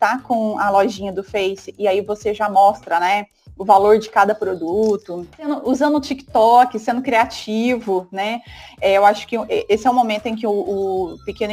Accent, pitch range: Brazilian, 205-255 Hz